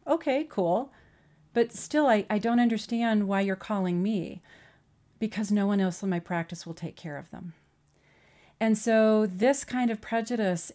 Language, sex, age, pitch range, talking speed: English, female, 40-59, 175-220 Hz, 165 wpm